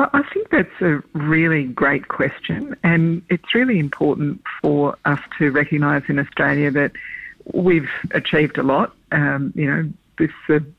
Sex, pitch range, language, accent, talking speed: female, 145-165 Hz, English, Australian, 145 wpm